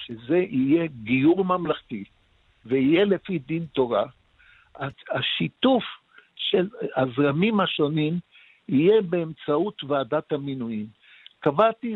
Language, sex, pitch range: Hebrew, male, 145-205 Hz